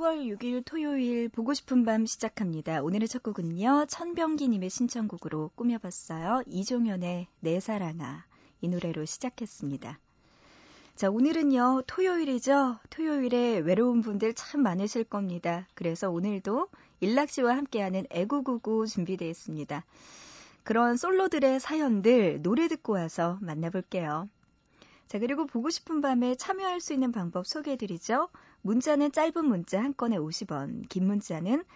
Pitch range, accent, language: 180-270 Hz, native, Korean